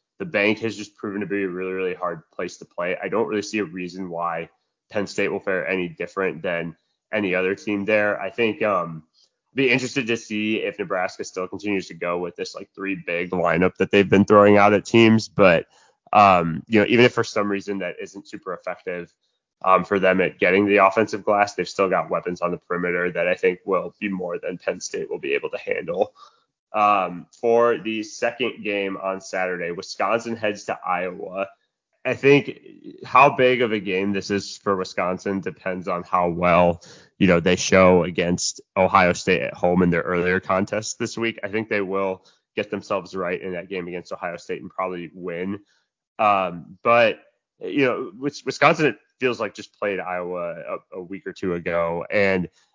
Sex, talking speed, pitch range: male, 200 wpm, 90-110 Hz